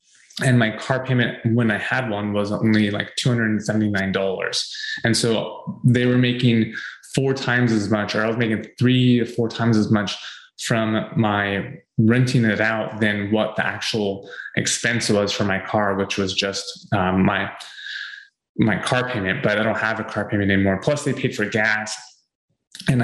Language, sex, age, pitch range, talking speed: English, male, 20-39, 105-120 Hz, 175 wpm